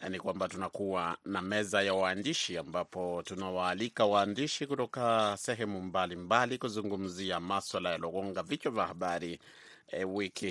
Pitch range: 95-115 Hz